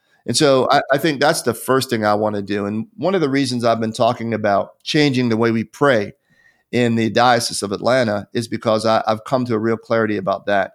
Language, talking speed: English, 240 wpm